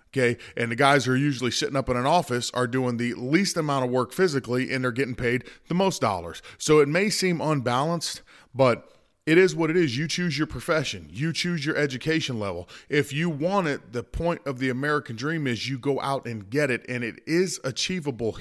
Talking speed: 220 wpm